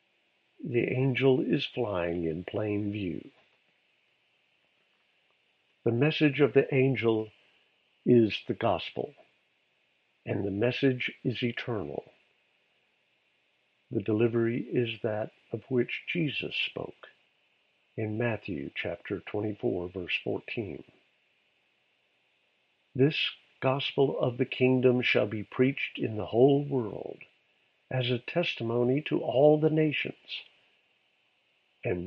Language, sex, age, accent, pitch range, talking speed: English, male, 60-79, American, 105-135 Hz, 100 wpm